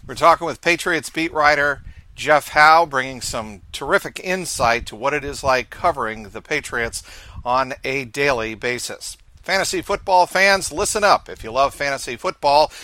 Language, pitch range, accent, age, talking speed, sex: English, 120-155 Hz, American, 50-69, 160 wpm, male